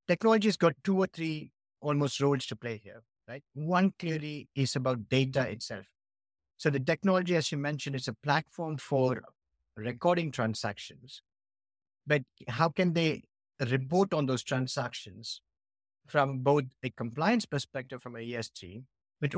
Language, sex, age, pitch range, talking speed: English, male, 50-69, 110-150 Hz, 140 wpm